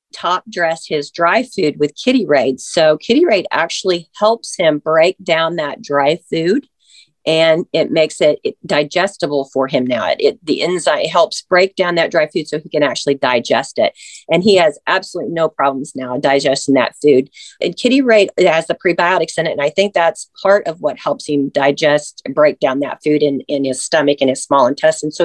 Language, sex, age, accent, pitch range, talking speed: English, female, 40-59, American, 155-195 Hz, 200 wpm